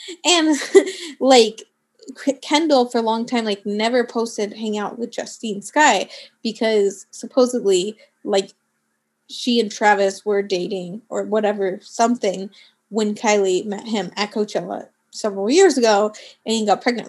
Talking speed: 135 wpm